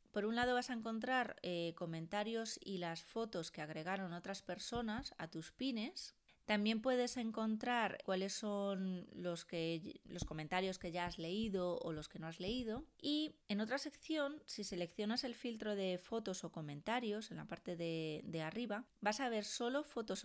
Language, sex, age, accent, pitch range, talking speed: Spanish, female, 20-39, Spanish, 170-225 Hz, 175 wpm